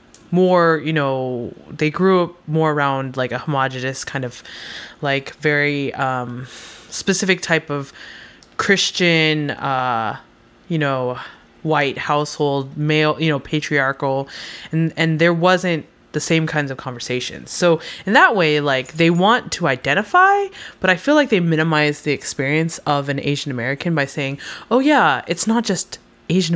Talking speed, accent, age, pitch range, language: 150 wpm, American, 20-39, 140-170 Hz, English